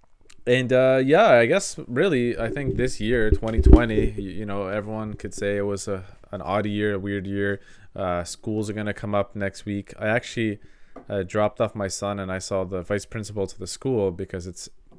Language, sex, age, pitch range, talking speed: English, male, 20-39, 95-110 Hz, 210 wpm